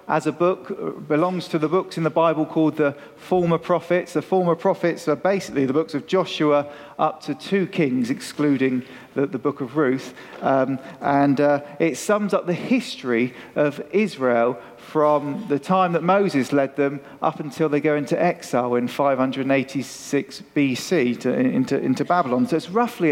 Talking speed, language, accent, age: 170 wpm, English, British, 40-59